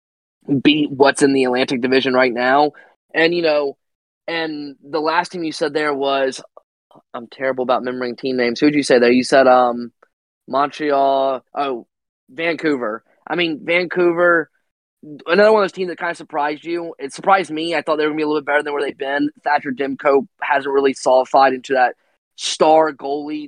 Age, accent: 20-39, American